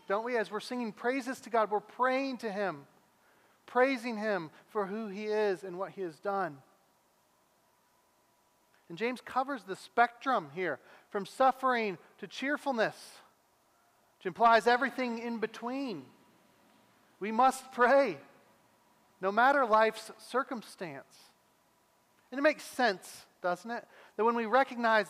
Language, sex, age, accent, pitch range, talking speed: English, male, 40-59, American, 210-260 Hz, 130 wpm